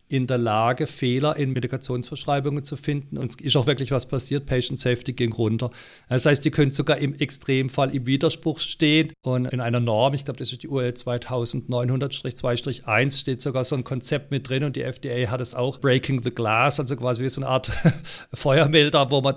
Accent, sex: German, male